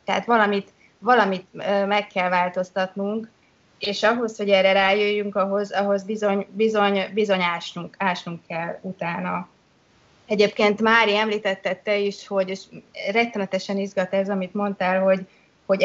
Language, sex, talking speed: Hungarian, female, 130 wpm